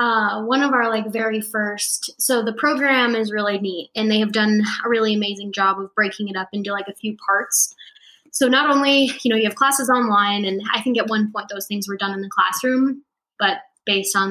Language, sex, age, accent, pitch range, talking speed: English, female, 10-29, American, 195-235 Hz, 230 wpm